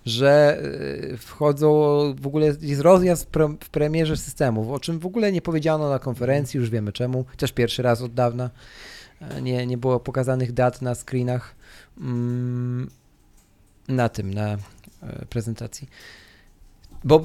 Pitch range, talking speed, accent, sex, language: 120-165 Hz, 135 wpm, native, male, Polish